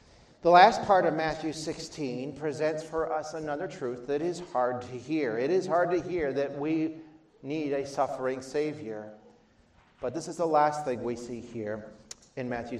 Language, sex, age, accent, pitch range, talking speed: English, male, 40-59, American, 130-170 Hz, 180 wpm